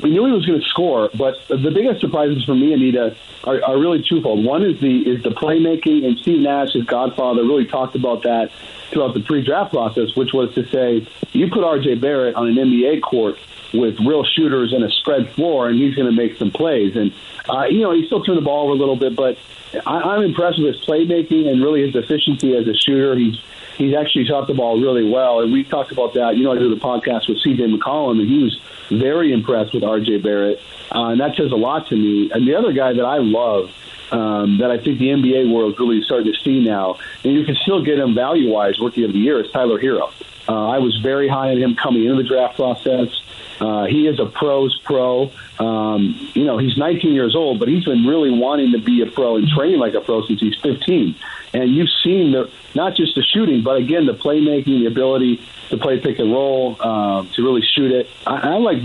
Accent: American